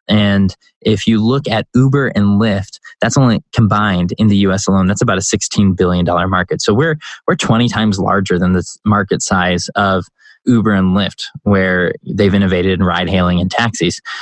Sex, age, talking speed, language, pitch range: male, 20-39, 180 wpm, English, 95-110 Hz